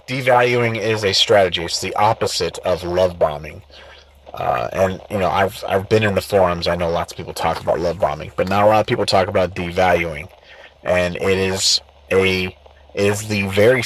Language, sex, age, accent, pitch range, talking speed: English, male, 30-49, American, 90-110 Hz, 195 wpm